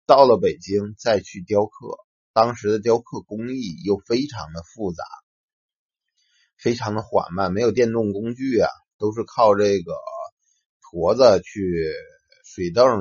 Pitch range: 100-150 Hz